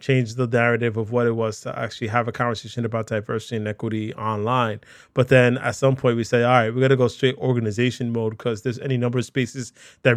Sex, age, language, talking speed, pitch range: male, 20-39, English, 230 wpm, 115-130 Hz